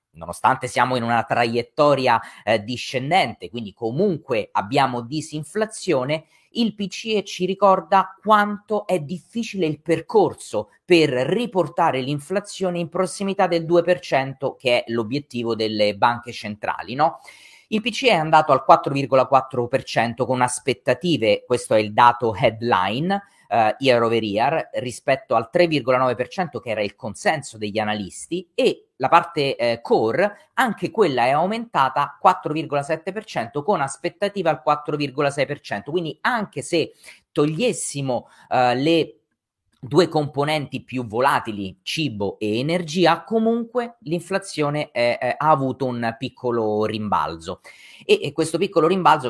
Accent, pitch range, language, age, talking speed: native, 125-185 Hz, Italian, 30-49, 120 wpm